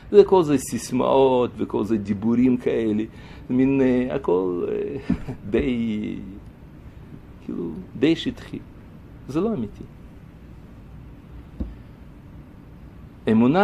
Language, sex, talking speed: Hebrew, male, 90 wpm